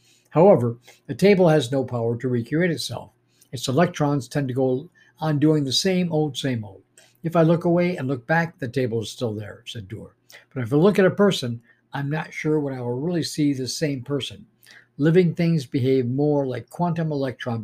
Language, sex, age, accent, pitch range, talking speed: English, male, 60-79, American, 120-160 Hz, 205 wpm